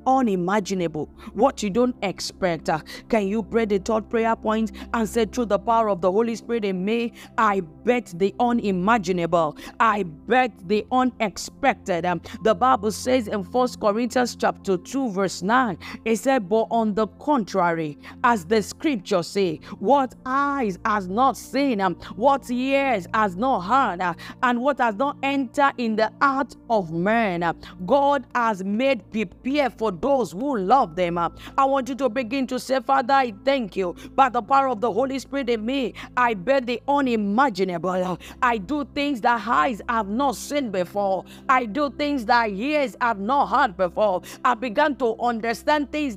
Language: English